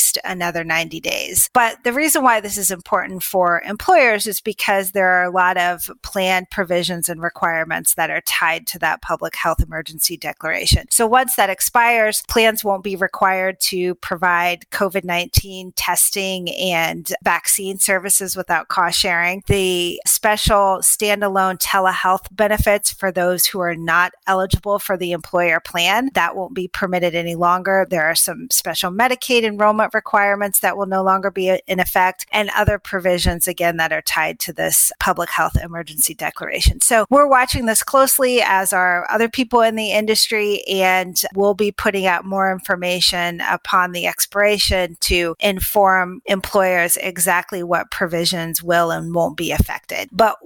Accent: American